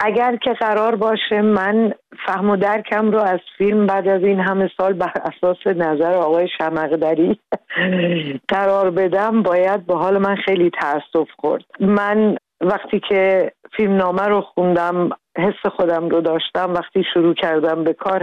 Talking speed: 150 wpm